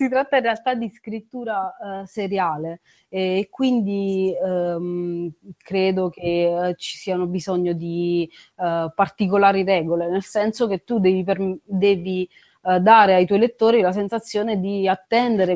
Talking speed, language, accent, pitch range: 120 wpm, Italian, native, 185-225 Hz